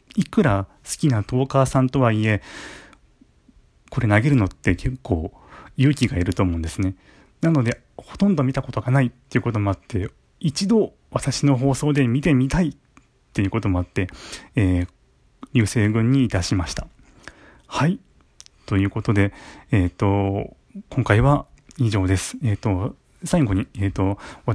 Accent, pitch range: native, 100-135 Hz